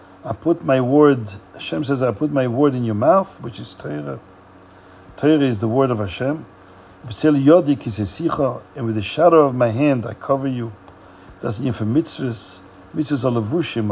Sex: male